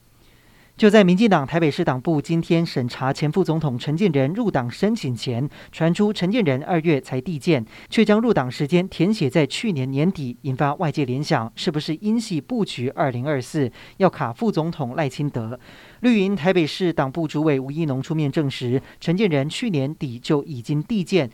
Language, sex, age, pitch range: Chinese, male, 40-59, 135-185 Hz